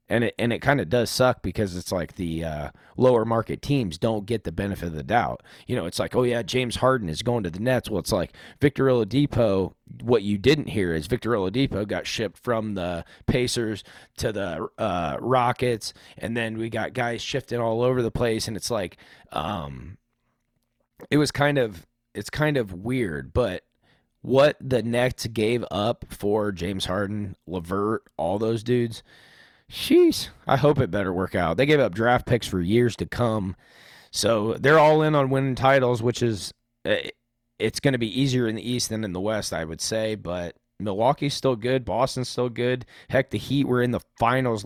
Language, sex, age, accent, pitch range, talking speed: English, male, 30-49, American, 100-125 Hz, 195 wpm